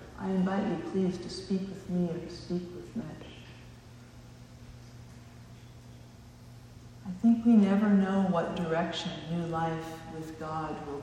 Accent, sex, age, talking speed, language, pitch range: American, female, 40-59, 135 wpm, English, 120-190 Hz